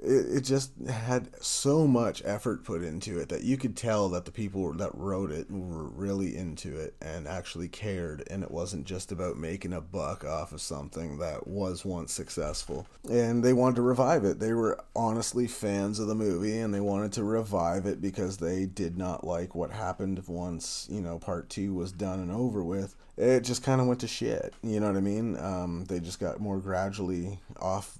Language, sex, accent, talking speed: English, male, American, 205 wpm